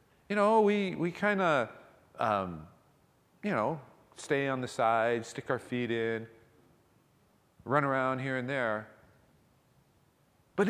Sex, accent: male, American